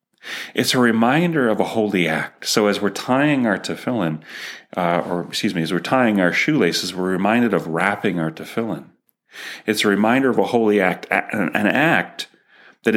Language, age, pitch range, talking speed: English, 30-49, 85-105 Hz, 175 wpm